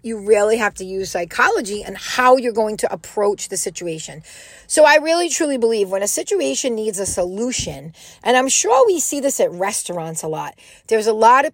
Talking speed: 205 wpm